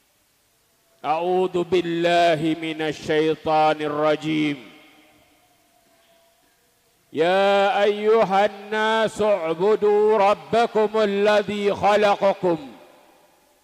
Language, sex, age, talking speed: Indonesian, male, 50-69, 55 wpm